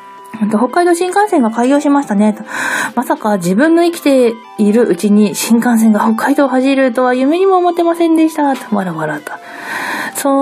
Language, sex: Japanese, female